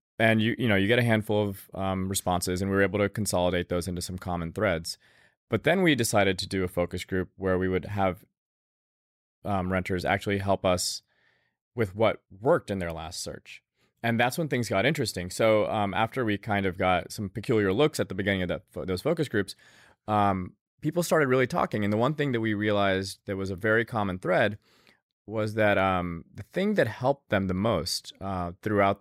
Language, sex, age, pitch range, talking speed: English, male, 20-39, 90-105 Hz, 210 wpm